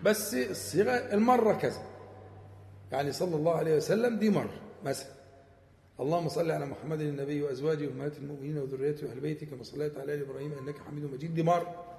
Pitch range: 135-215 Hz